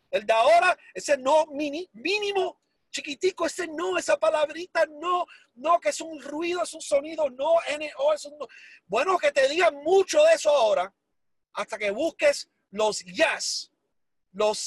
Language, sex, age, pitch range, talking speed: Spanish, male, 40-59, 235-315 Hz, 160 wpm